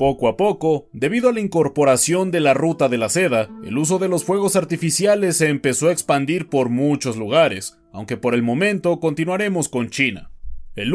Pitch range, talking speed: 120-175 Hz, 185 wpm